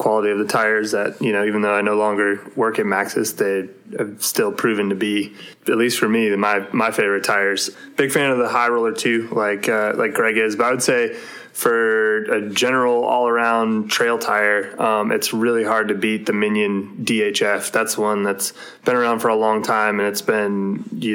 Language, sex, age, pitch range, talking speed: English, male, 20-39, 105-115 Hz, 210 wpm